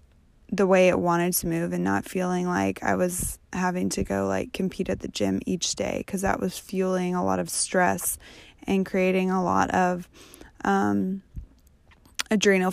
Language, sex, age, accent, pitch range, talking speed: English, female, 20-39, American, 170-190 Hz, 175 wpm